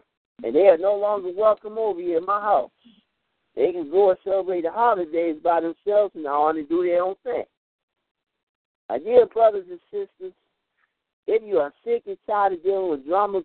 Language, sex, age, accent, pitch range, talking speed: English, male, 60-79, American, 175-225 Hz, 190 wpm